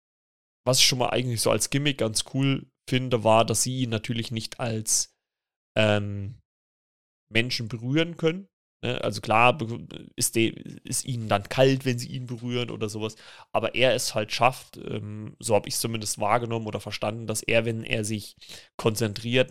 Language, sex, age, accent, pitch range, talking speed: German, male, 30-49, German, 110-130 Hz, 170 wpm